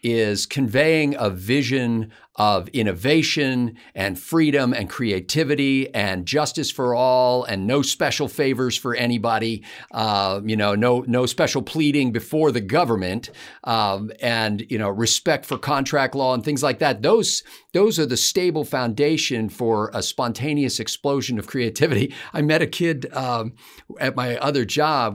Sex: male